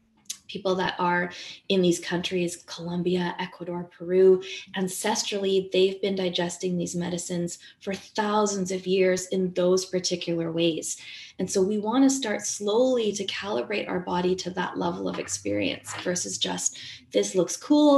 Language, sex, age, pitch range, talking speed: English, female, 20-39, 180-220 Hz, 145 wpm